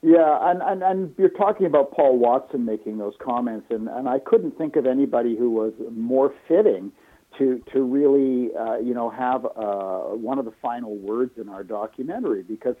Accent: American